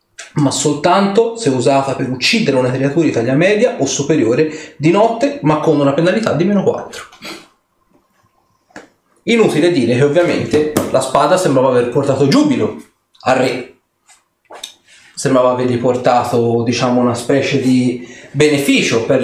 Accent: native